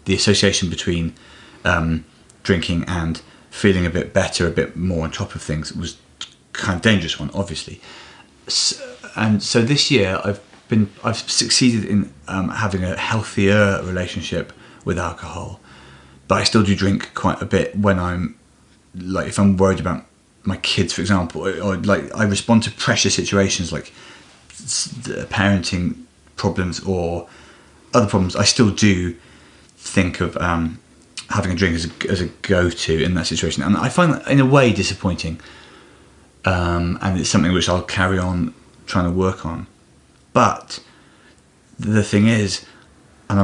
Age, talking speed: 30-49, 155 wpm